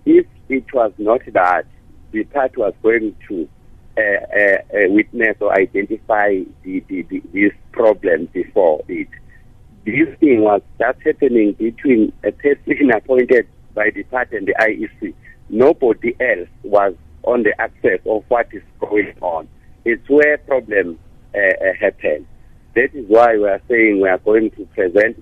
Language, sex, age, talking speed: English, male, 60-79, 155 wpm